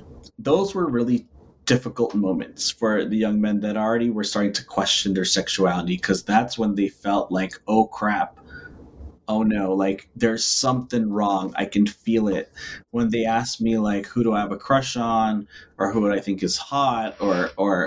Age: 30-49